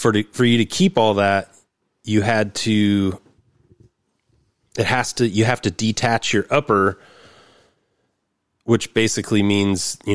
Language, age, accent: English, 30-49, American